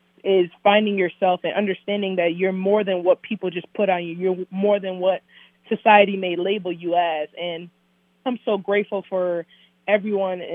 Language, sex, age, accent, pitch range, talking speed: English, female, 20-39, American, 170-195 Hz, 170 wpm